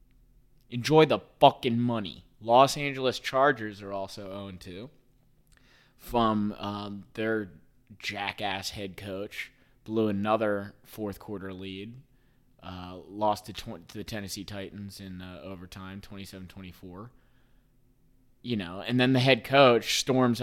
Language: English